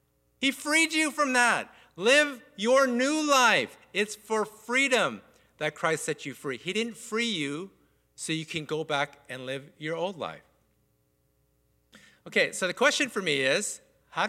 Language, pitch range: English, 145-200 Hz